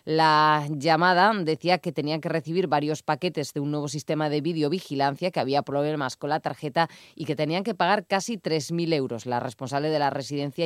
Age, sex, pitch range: 20-39, female, 140-165 Hz